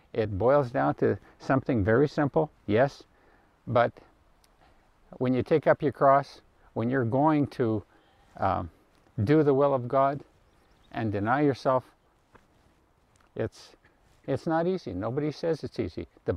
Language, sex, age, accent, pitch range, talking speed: English, male, 50-69, American, 115-145 Hz, 135 wpm